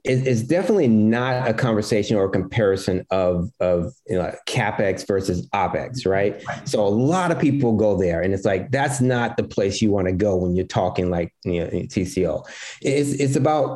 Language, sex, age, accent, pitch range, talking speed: English, male, 30-49, American, 95-120 Hz, 190 wpm